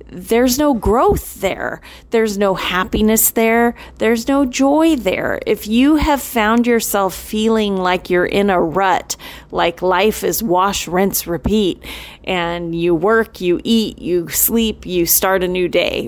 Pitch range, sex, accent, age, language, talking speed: 190-250 Hz, female, American, 30-49, English, 155 wpm